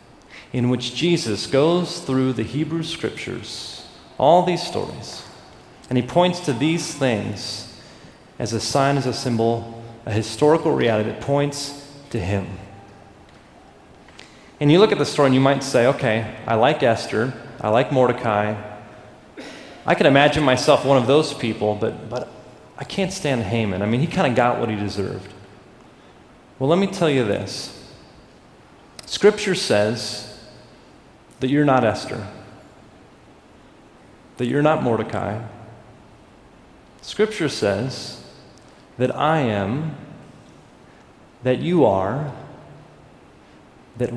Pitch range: 105-145 Hz